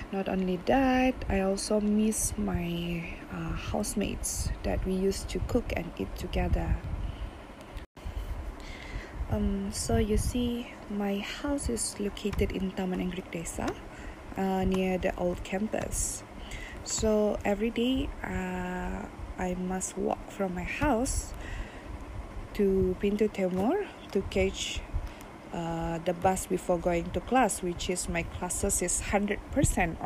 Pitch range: 165-225 Hz